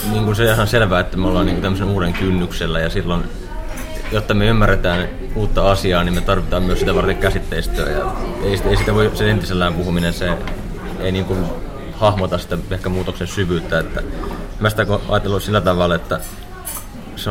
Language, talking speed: Finnish, 170 wpm